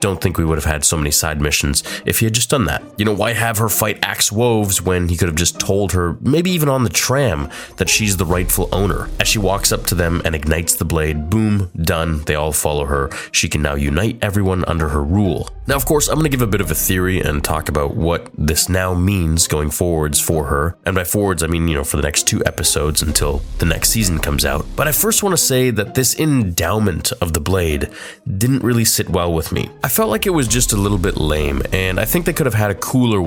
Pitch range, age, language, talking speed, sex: 80-110 Hz, 20-39, English, 255 wpm, male